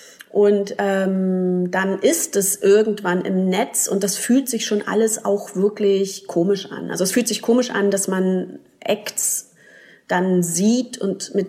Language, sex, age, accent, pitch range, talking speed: German, female, 30-49, German, 180-205 Hz, 160 wpm